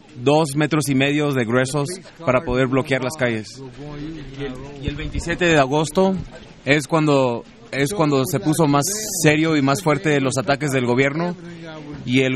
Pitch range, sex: 130-155 Hz, male